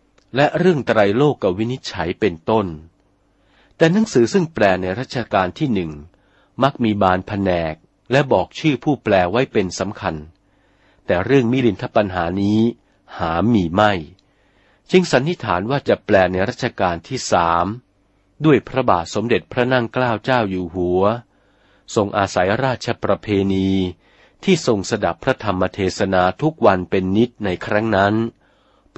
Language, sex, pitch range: Thai, male, 95-125 Hz